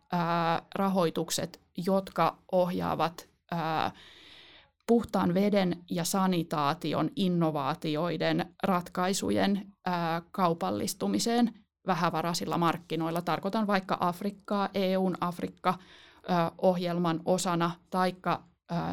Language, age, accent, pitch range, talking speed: Finnish, 20-39, native, 165-200 Hz, 55 wpm